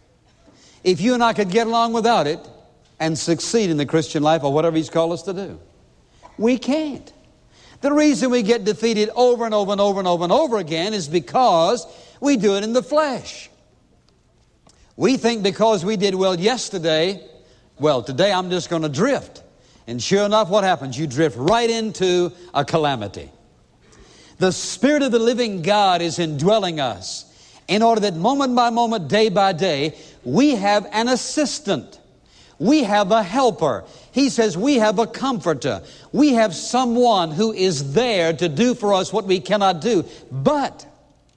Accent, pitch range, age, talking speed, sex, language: American, 165-230 Hz, 60-79, 175 wpm, male, English